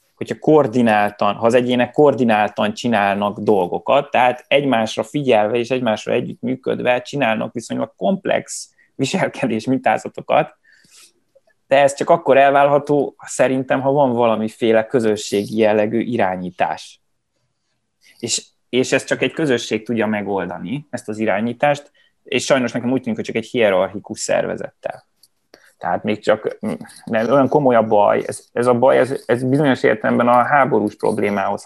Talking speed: 135 wpm